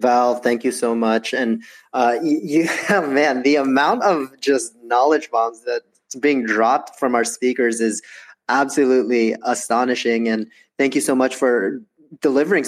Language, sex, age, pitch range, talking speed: English, male, 20-39, 115-135 Hz, 150 wpm